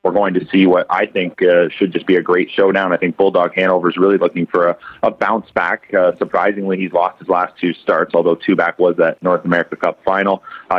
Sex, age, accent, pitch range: male, 30-49, American, 85-100 Hz